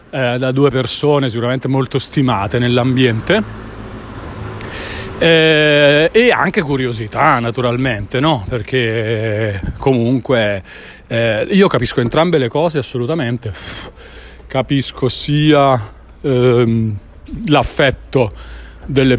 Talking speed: 75 wpm